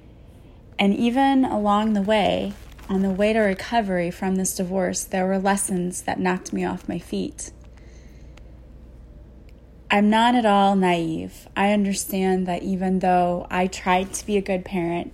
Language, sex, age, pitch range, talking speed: English, female, 20-39, 170-200 Hz, 155 wpm